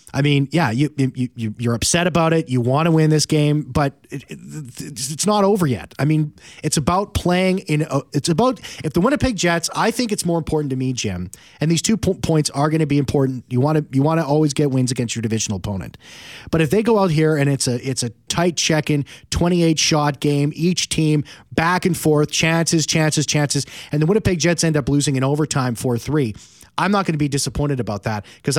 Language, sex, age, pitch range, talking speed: English, male, 30-49, 135-165 Hz, 235 wpm